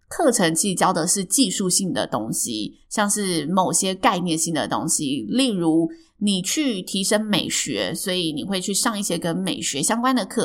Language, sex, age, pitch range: Chinese, female, 20-39, 175-250 Hz